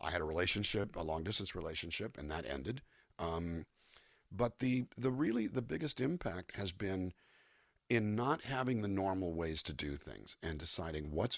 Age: 50-69